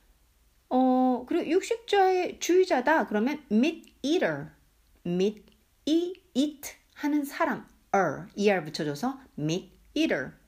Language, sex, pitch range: Korean, female, 180-290 Hz